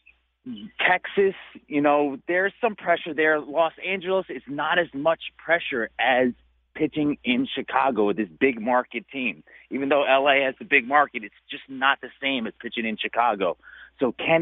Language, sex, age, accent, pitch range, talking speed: English, male, 30-49, American, 120-150 Hz, 170 wpm